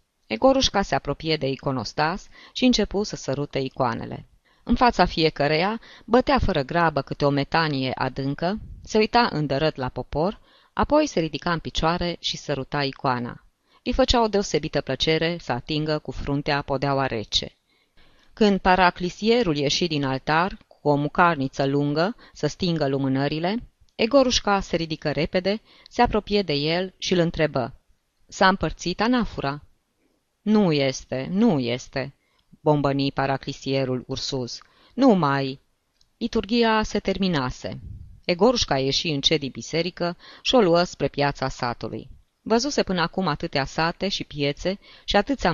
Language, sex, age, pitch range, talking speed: Romanian, female, 20-39, 140-195 Hz, 135 wpm